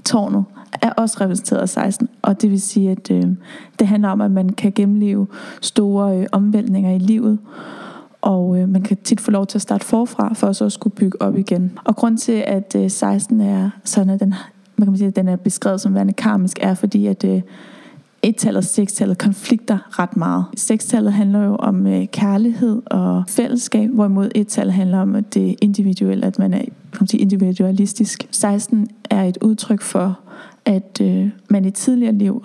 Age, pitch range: 20-39, 195-220 Hz